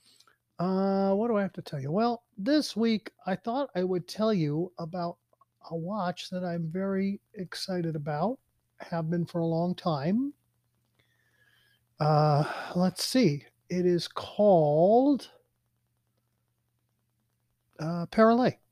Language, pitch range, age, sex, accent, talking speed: English, 150-185 Hz, 40-59, male, American, 125 wpm